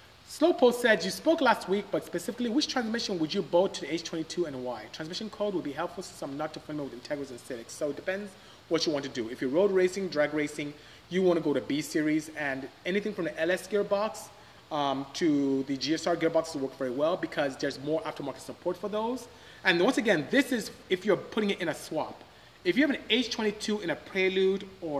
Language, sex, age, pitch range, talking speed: English, male, 30-49, 150-210 Hz, 230 wpm